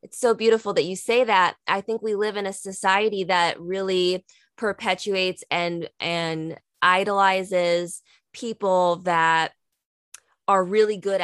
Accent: American